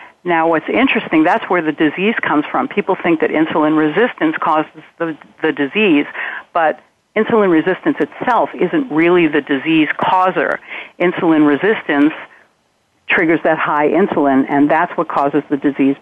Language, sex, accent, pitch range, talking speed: English, female, American, 145-185 Hz, 145 wpm